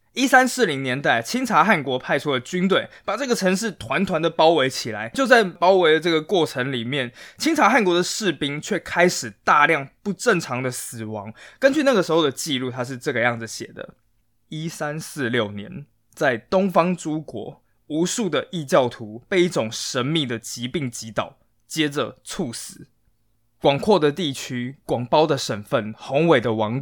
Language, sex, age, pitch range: Chinese, male, 20-39, 115-170 Hz